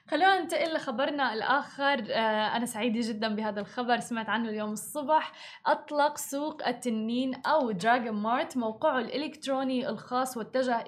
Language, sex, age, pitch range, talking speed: Arabic, female, 20-39, 225-270 Hz, 130 wpm